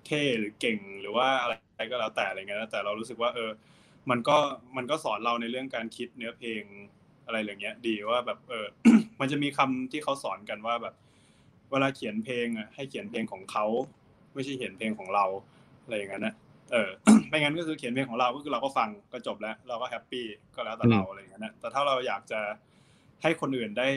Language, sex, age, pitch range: Thai, male, 20-39, 115-140 Hz